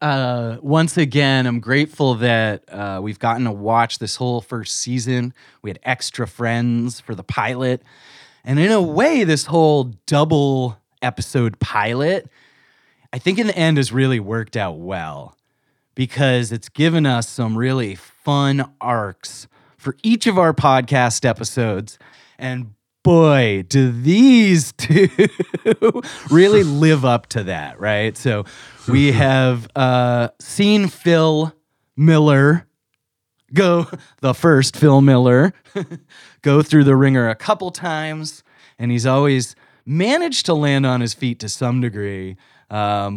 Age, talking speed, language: 30-49, 135 wpm, English